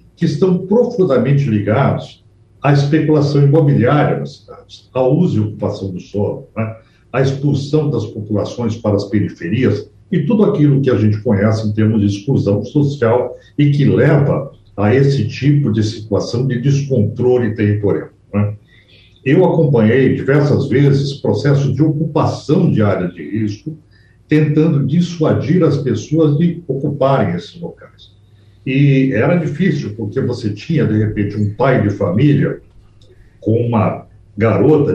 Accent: Brazilian